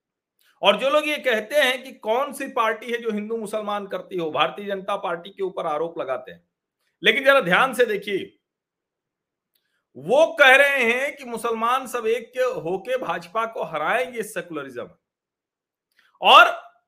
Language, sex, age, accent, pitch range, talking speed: Hindi, male, 40-59, native, 205-280 Hz, 155 wpm